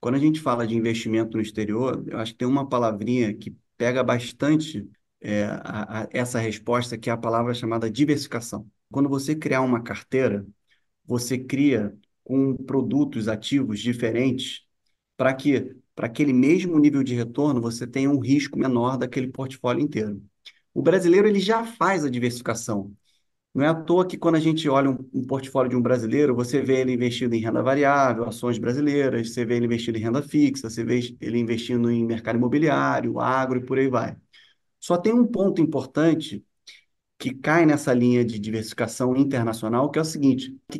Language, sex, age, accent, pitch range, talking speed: Portuguese, male, 30-49, Brazilian, 115-150 Hz, 175 wpm